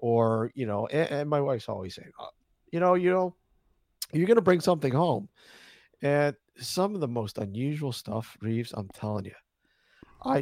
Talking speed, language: 180 wpm, English